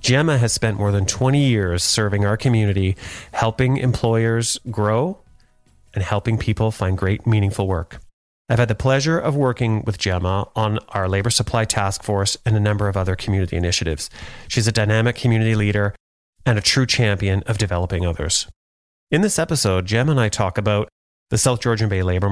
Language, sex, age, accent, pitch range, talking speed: English, male, 30-49, American, 95-120 Hz, 175 wpm